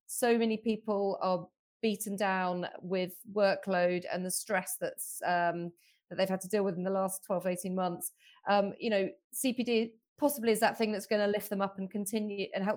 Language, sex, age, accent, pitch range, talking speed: English, female, 30-49, British, 190-230 Hz, 200 wpm